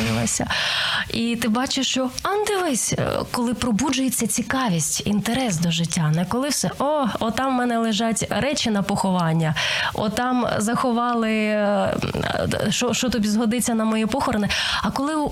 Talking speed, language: 130 wpm, Ukrainian